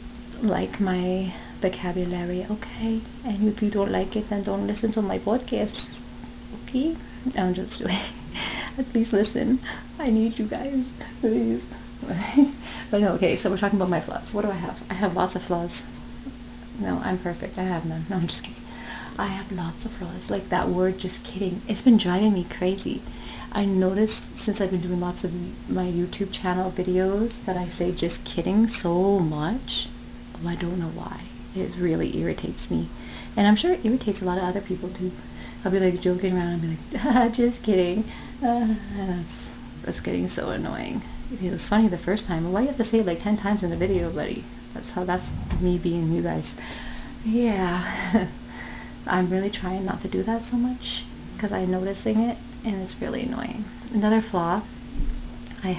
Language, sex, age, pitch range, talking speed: English, female, 30-49, 180-220 Hz, 185 wpm